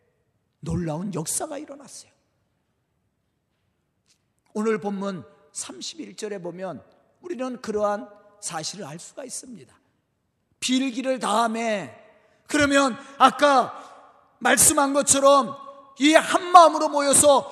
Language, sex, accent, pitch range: Korean, male, native, 220-305 Hz